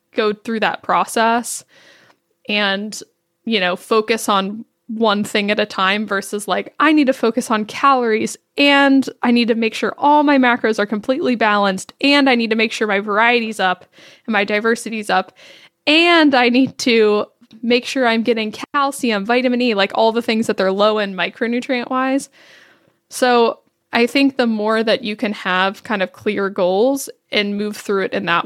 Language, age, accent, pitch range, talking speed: English, 10-29, American, 205-245 Hz, 185 wpm